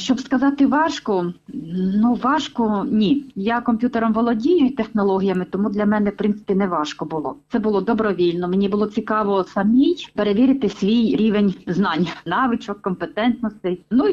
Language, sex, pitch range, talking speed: Ukrainian, female, 190-245 Hz, 150 wpm